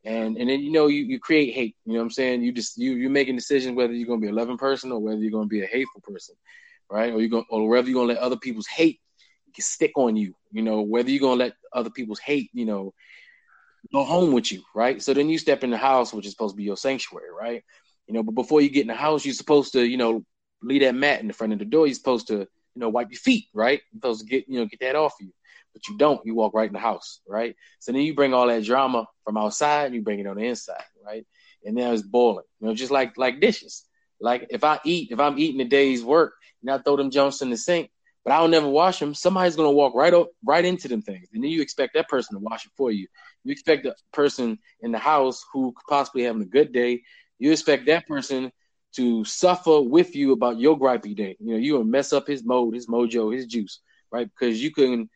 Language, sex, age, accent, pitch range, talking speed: English, male, 20-39, American, 115-155 Hz, 270 wpm